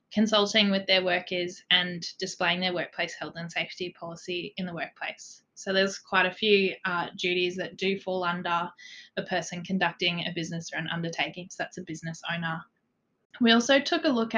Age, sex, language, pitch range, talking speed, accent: 20-39, female, English, 175-205 Hz, 185 wpm, Australian